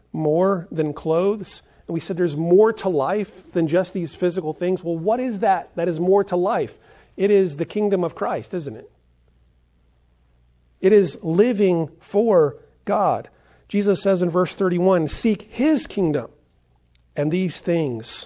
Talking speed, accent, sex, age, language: 160 wpm, American, male, 40-59, English